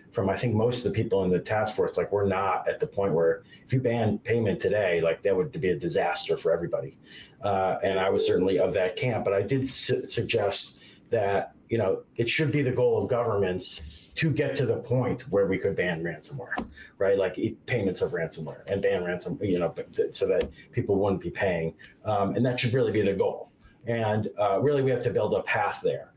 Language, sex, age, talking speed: English, male, 30-49, 220 wpm